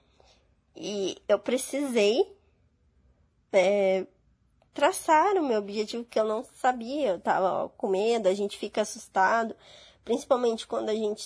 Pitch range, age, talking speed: 205-290 Hz, 20-39, 125 wpm